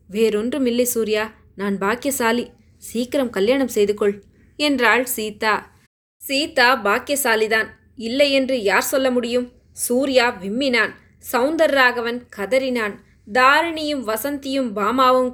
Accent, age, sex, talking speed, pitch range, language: native, 20-39, female, 100 wpm, 230-290 Hz, Tamil